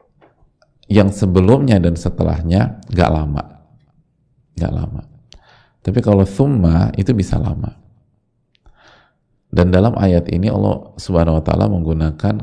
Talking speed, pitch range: 110 wpm, 85-105 Hz